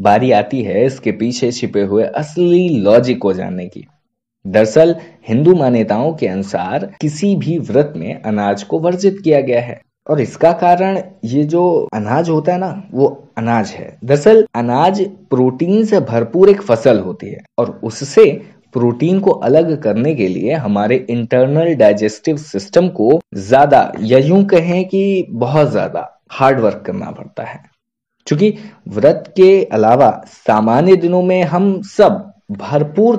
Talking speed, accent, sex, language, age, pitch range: 150 wpm, native, male, Hindi, 20-39, 125-185 Hz